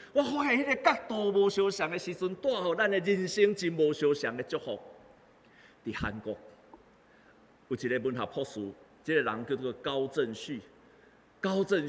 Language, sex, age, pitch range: Chinese, male, 50-69, 125-200 Hz